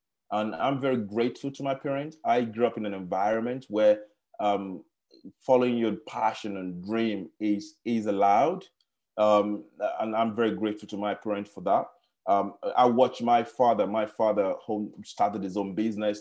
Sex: male